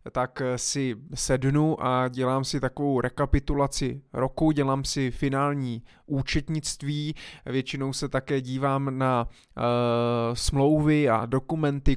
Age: 20-39